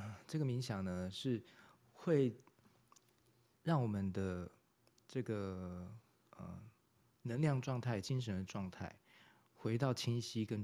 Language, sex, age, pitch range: Chinese, male, 20-39, 95-120 Hz